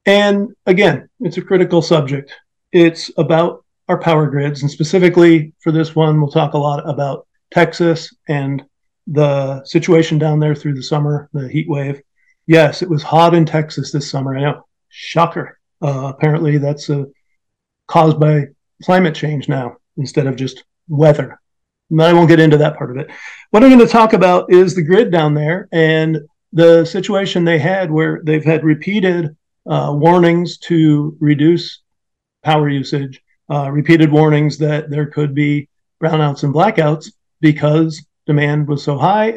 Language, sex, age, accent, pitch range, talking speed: English, male, 40-59, American, 150-170 Hz, 165 wpm